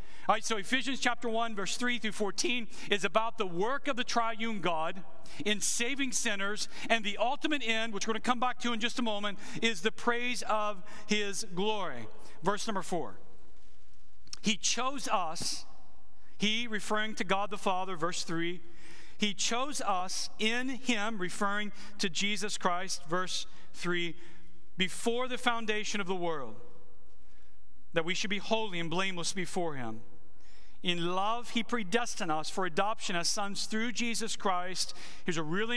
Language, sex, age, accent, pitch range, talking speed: English, male, 40-59, American, 165-225 Hz, 165 wpm